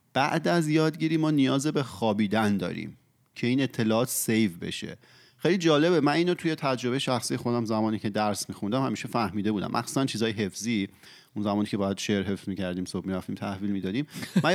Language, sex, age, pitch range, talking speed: Persian, male, 30-49, 100-130 Hz, 175 wpm